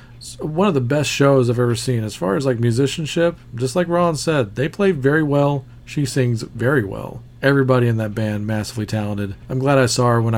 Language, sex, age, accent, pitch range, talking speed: English, male, 40-59, American, 110-130 Hz, 215 wpm